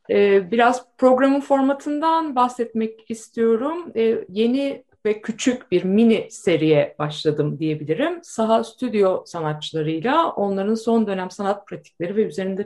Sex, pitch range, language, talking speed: female, 180-240 Hz, Turkish, 110 wpm